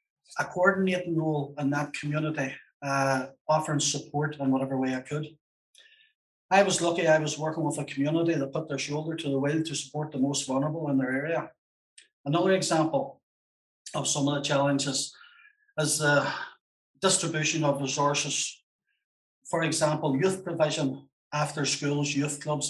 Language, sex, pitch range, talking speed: English, male, 140-160 Hz, 155 wpm